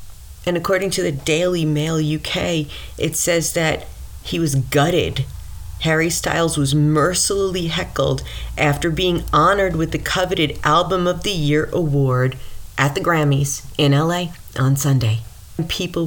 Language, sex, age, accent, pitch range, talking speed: English, female, 40-59, American, 130-155 Hz, 140 wpm